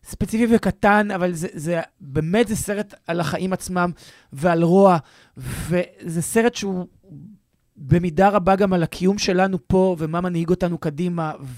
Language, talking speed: Hebrew, 140 wpm